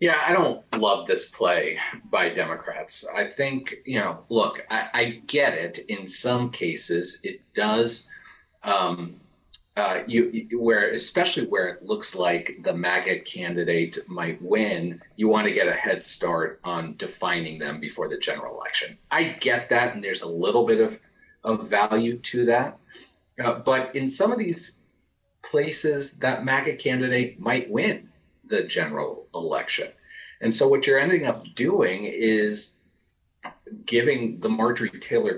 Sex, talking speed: male, 155 wpm